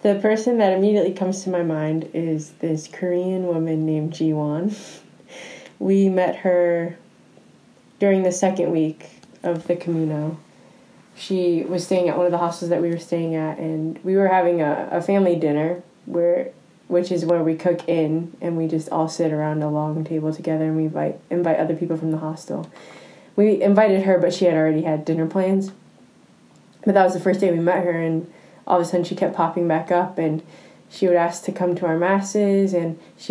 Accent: American